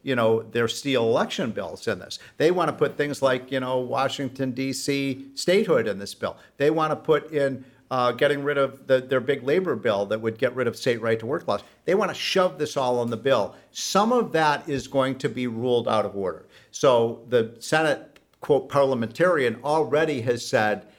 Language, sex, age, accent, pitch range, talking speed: English, male, 50-69, American, 120-155 Hz, 210 wpm